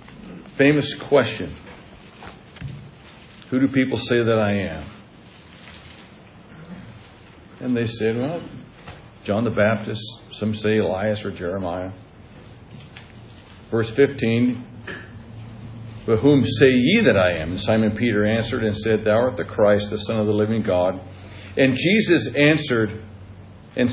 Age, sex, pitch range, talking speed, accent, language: 60-79, male, 100-120 Hz, 125 wpm, American, English